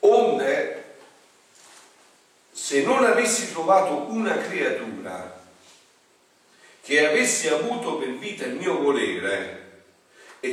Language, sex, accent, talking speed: Italian, male, native, 90 wpm